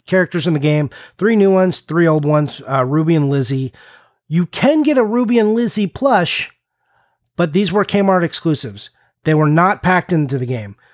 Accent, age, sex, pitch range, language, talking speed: American, 30-49, male, 135-180 Hz, English, 185 wpm